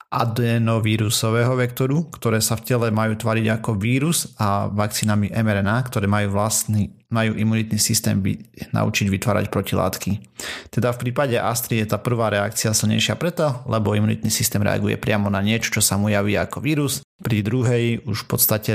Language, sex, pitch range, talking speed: Slovak, male, 100-115 Hz, 165 wpm